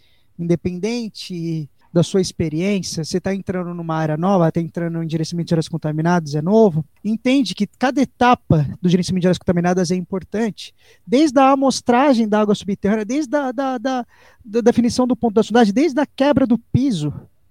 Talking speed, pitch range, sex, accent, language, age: 175 wpm, 180-220 Hz, male, Brazilian, Portuguese, 20-39